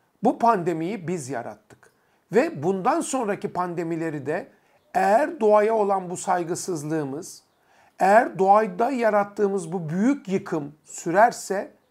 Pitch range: 165-230 Hz